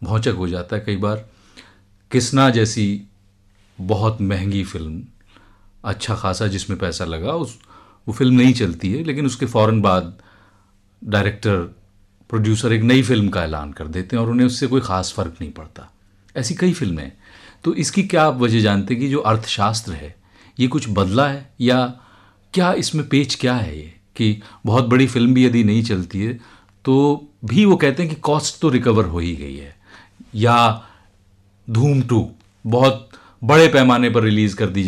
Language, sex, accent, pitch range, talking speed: Hindi, male, native, 100-125 Hz, 170 wpm